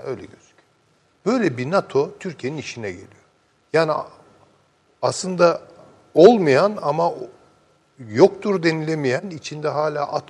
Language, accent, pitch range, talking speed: Turkish, native, 120-160 Hz, 100 wpm